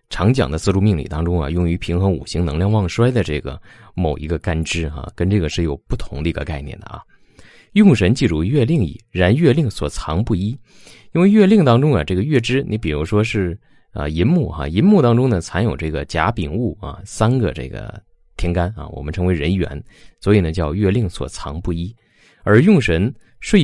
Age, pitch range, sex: 20-39, 85-125 Hz, male